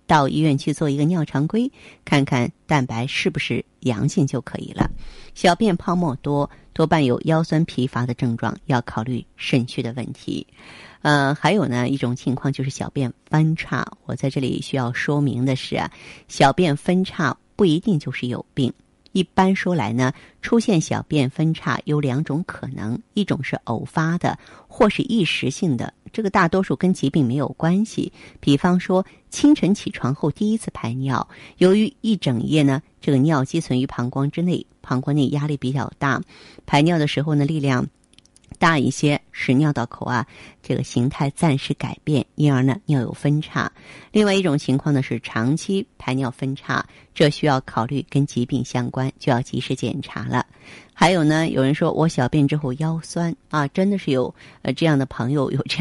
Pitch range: 130-165 Hz